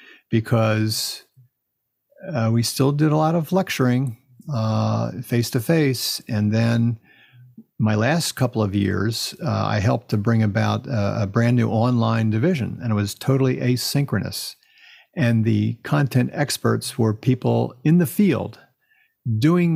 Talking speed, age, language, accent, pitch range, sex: 135 wpm, 50-69, English, American, 110-130 Hz, male